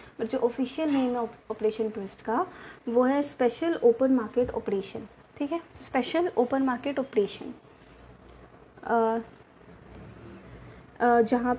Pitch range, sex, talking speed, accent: 220-280 Hz, female, 105 wpm, native